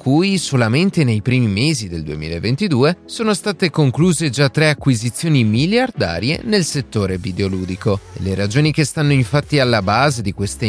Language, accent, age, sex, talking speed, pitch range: Italian, native, 30-49, male, 150 wpm, 105-155 Hz